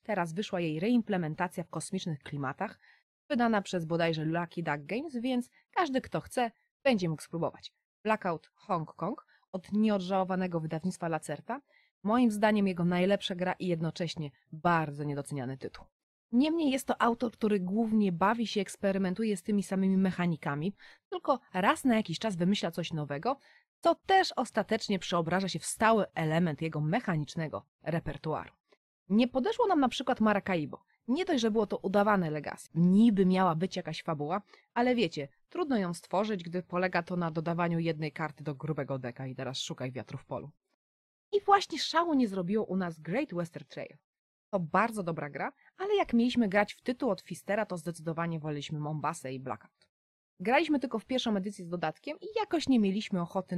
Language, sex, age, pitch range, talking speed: Polish, female, 30-49, 160-225 Hz, 165 wpm